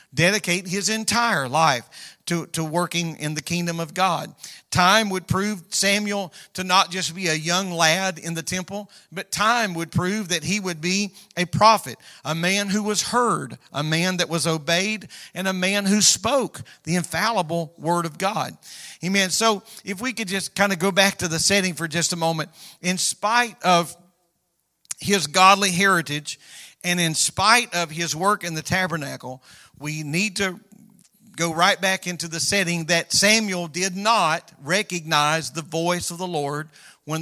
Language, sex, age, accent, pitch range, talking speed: English, male, 50-69, American, 160-195 Hz, 175 wpm